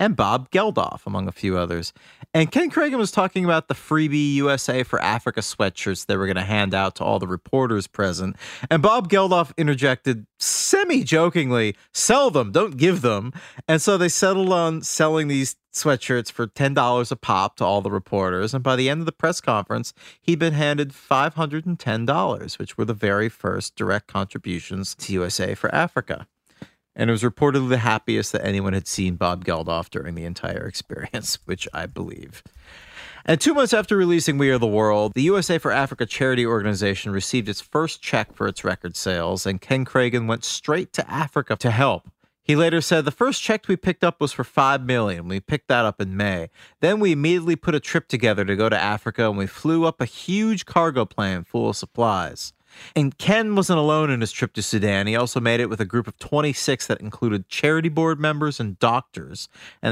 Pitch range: 100-155 Hz